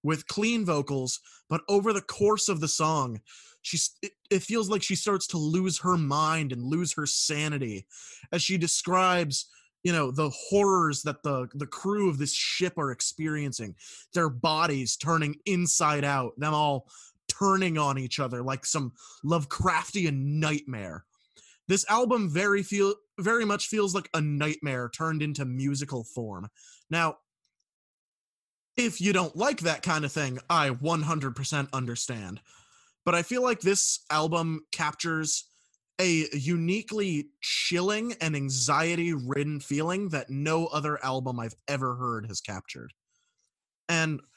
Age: 20-39